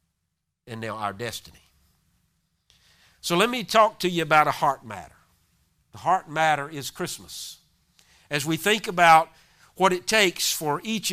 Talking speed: 150 wpm